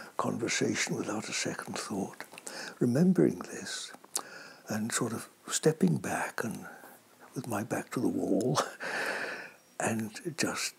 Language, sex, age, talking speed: English, male, 60-79, 115 wpm